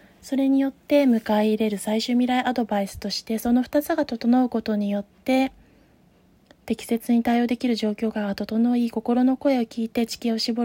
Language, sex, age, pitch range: Japanese, female, 20-39, 200-245 Hz